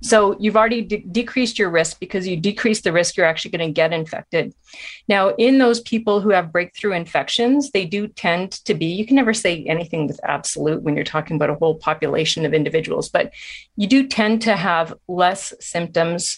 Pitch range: 165-205 Hz